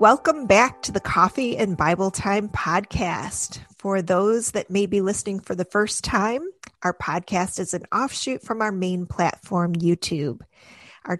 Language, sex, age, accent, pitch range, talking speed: English, female, 30-49, American, 180-240 Hz, 160 wpm